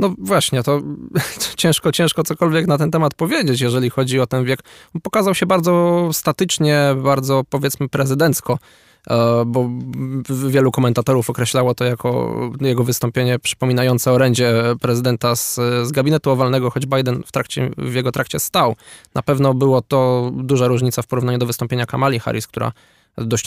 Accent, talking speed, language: native, 155 wpm, Polish